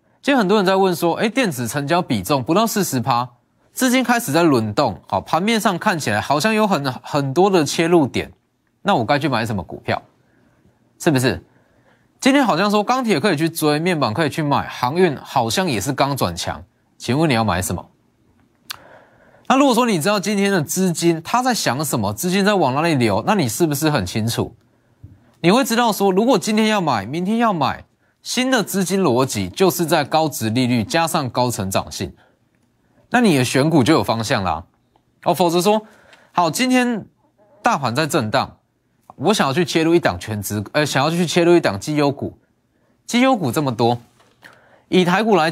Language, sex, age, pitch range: Chinese, male, 20-39, 120-195 Hz